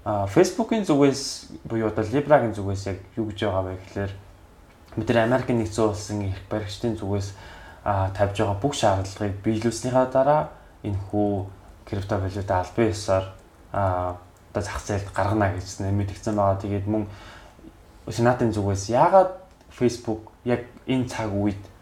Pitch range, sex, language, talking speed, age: 100-120 Hz, male, English, 105 wpm, 20-39